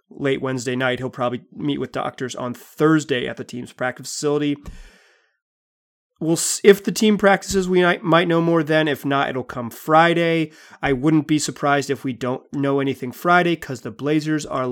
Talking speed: 185 wpm